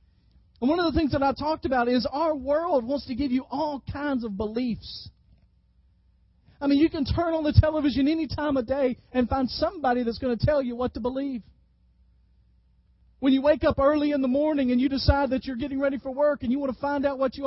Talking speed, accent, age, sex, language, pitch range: 235 wpm, American, 40-59, male, English, 235-285 Hz